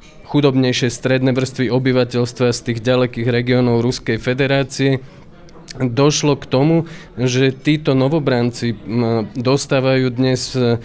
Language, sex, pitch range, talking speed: Slovak, male, 120-140 Hz, 100 wpm